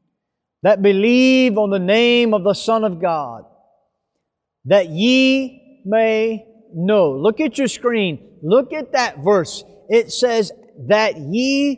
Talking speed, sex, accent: 130 wpm, male, American